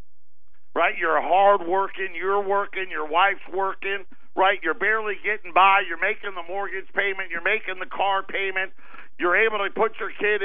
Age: 50-69